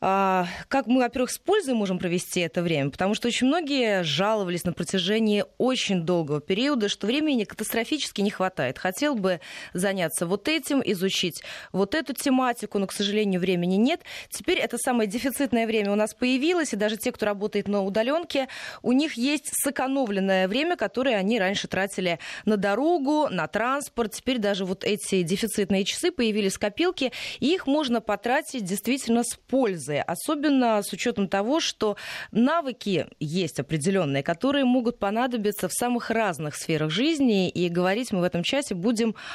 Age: 20-39